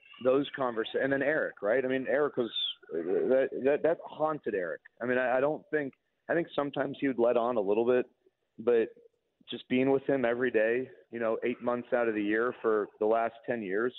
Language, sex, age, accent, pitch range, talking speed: English, male, 40-59, American, 115-150 Hz, 210 wpm